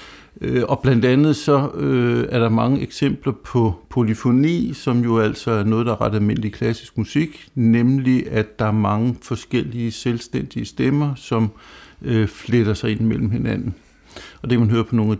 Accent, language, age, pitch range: native, Danish, 60-79, 110-130 Hz